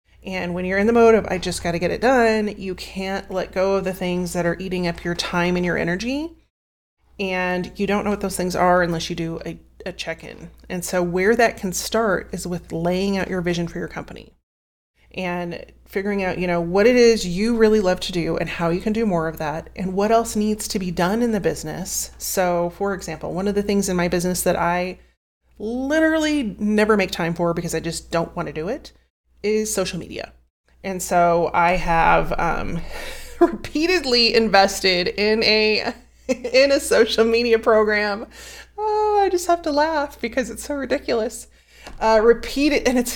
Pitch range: 175-225 Hz